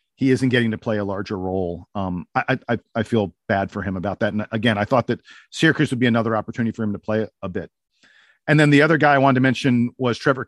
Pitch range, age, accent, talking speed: 120-160 Hz, 40-59, American, 260 wpm